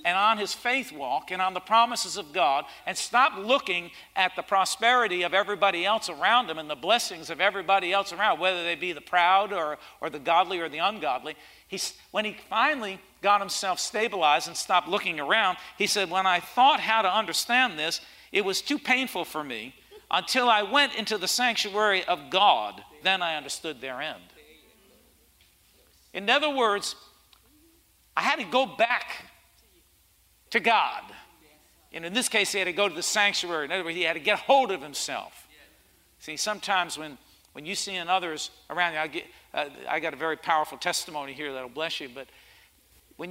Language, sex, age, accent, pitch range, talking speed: English, male, 50-69, American, 160-205 Hz, 190 wpm